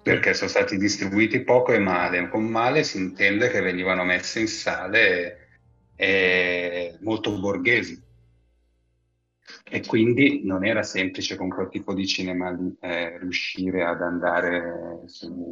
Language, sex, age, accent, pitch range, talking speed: Italian, male, 30-49, native, 90-105 Hz, 130 wpm